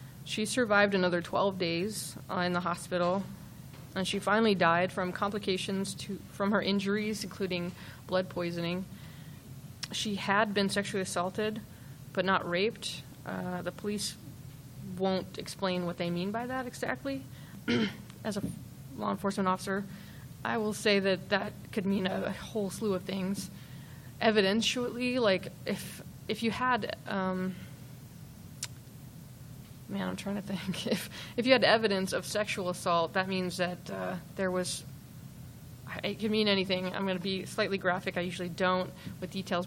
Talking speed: 145 wpm